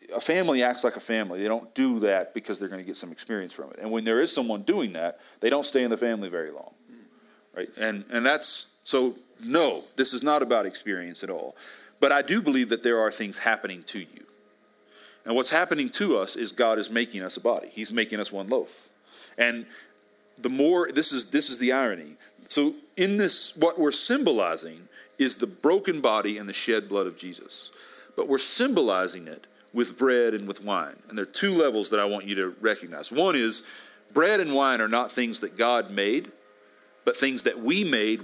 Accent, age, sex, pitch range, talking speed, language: American, 40-59, male, 105-150 Hz, 215 wpm, English